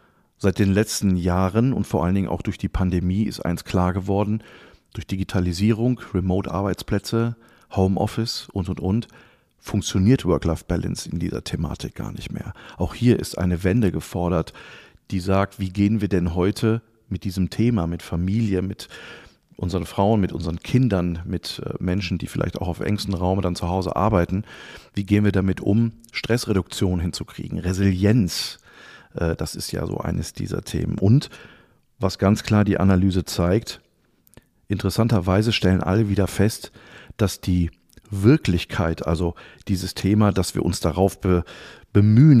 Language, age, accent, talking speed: German, 40-59, German, 150 wpm